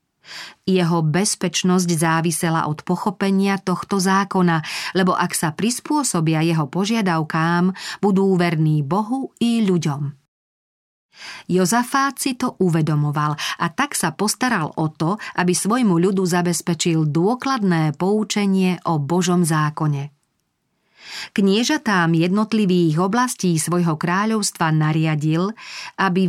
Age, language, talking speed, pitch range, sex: 40-59, Slovak, 100 wpm, 165-205 Hz, female